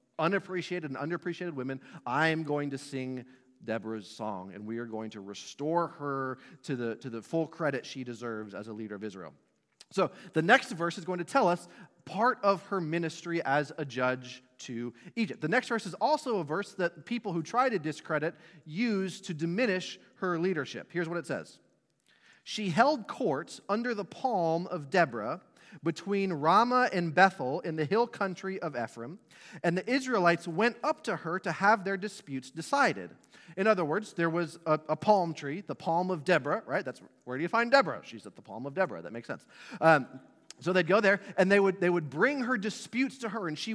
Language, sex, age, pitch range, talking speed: English, male, 30-49, 145-210 Hz, 200 wpm